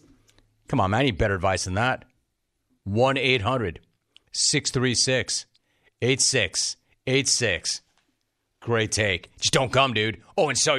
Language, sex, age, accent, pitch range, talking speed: English, male, 40-59, American, 110-140 Hz, 105 wpm